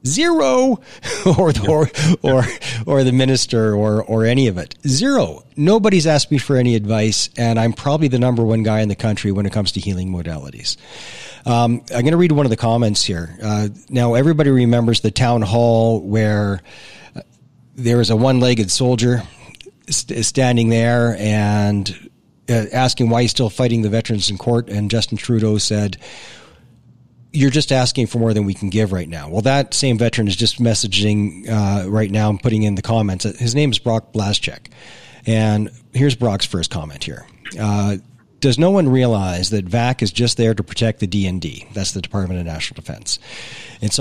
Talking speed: 180 wpm